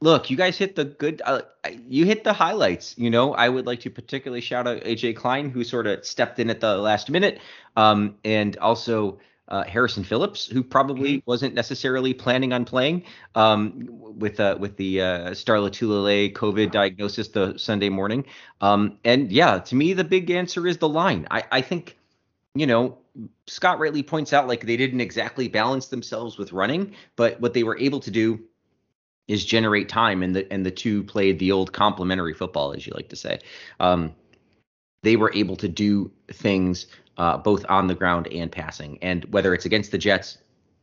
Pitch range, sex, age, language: 95-125 Hz, male, 30-49, English